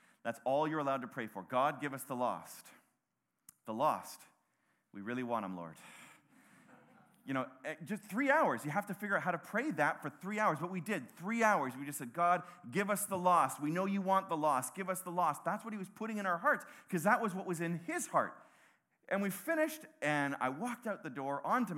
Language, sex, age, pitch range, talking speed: English, male, 30-49, 140-220 Hz, 235 wpm